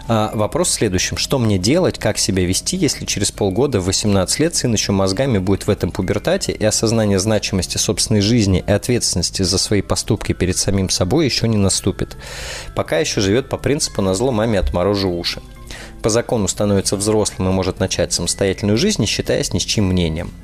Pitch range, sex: 95-115 Hz, male